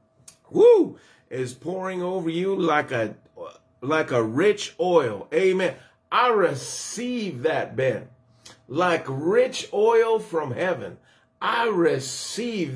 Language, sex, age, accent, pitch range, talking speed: English, male, 50-69, American, 130-220 Hz, 110 wpm